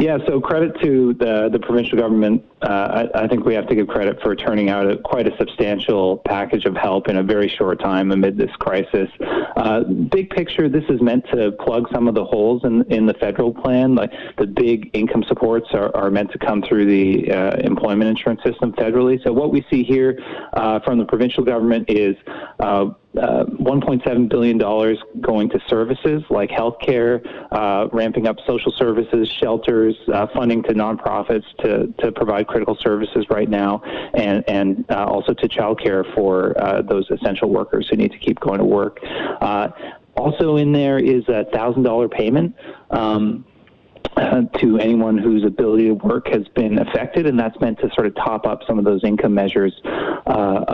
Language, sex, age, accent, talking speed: English, male, 30-49, American, 185 wpm